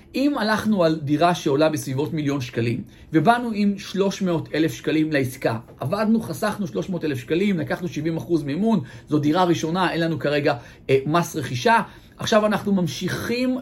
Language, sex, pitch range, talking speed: Hebrew, male, 150-180 Hz, 140 wpm